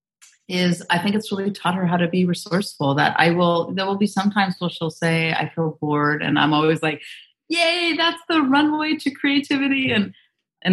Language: English